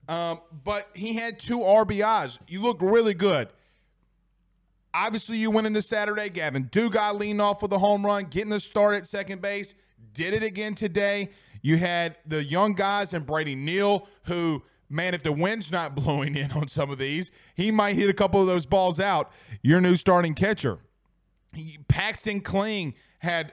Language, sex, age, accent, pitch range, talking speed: English, male, 30-49, American, 155-205 Hz, 180 wpm